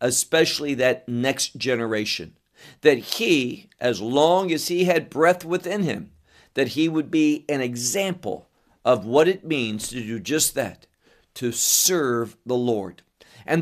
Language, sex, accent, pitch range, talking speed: English, male, American, 125-185 Hz, 145 wpm